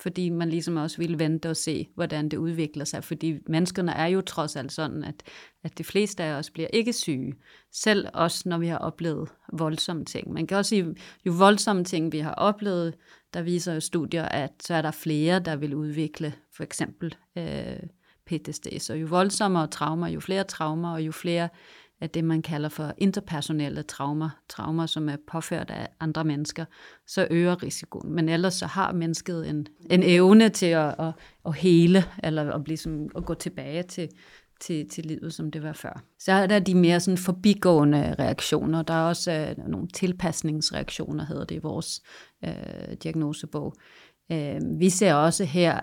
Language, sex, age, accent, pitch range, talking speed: Danish, female, 30-49, native, 155-185 Hz, 185 wpm